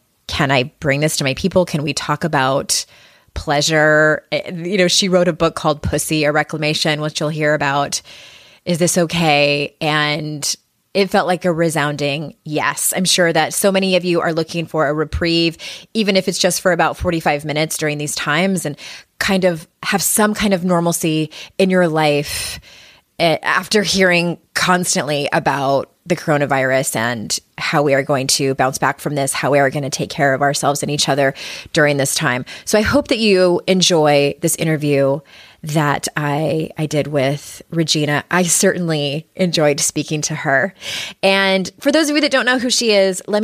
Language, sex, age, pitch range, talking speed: English, female, 20-39, 150-185 Hz, 185 wpm